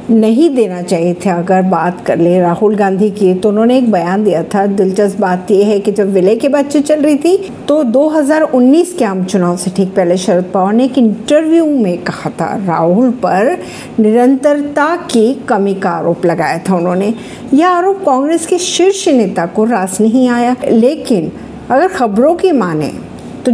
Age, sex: 50-69, female